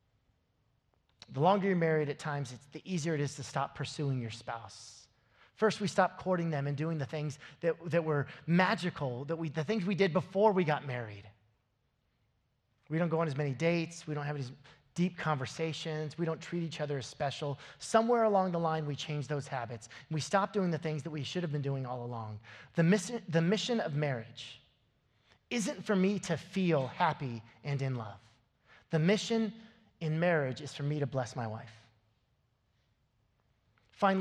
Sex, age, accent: male, 30-49, American